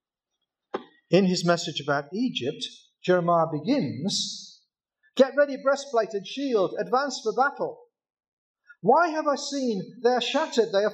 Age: 50-69